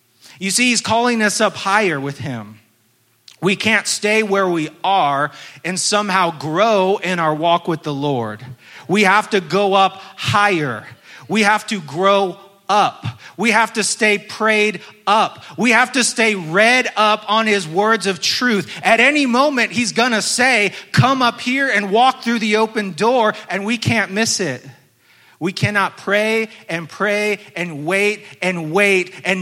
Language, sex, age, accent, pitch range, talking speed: English, male, 30-49, American, 160-215 Hz, 170 wpm